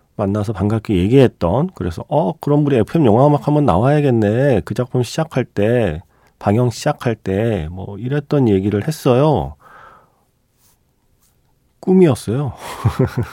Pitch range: 90-130 Hz